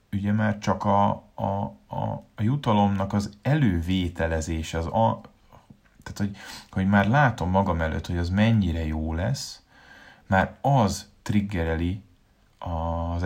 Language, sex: Hungarian, male